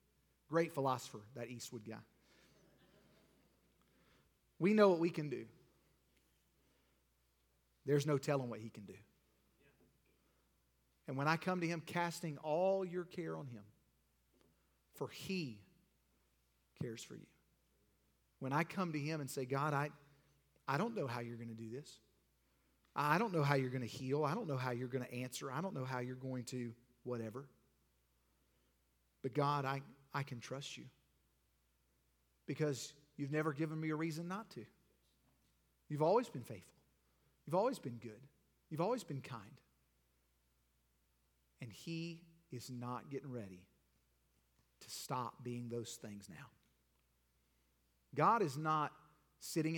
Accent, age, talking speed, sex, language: American, 40-59, 145 wpm, male, English